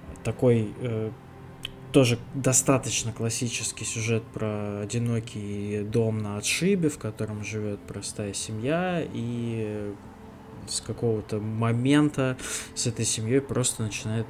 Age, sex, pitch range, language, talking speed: 20-39, male, 110-130 Hz, Russian, 105 wpm